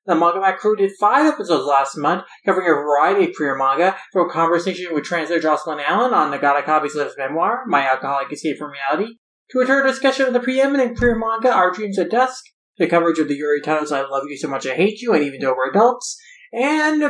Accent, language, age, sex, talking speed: American, English, 20-39, male, 225 wpm